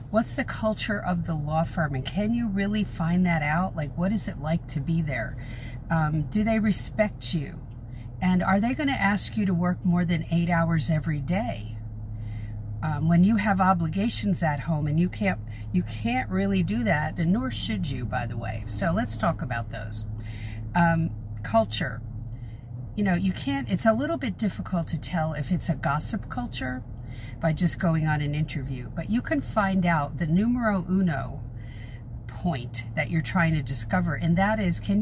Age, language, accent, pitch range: 50-69, English, American, 115-180 Hz